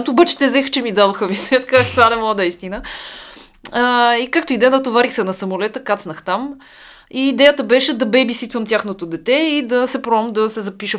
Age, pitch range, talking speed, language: 20-39, 195-255 Hz, 215 wpm, Bulgarian